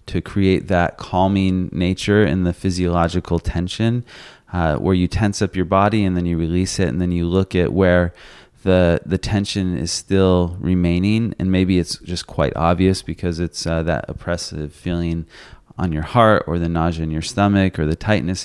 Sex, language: male, English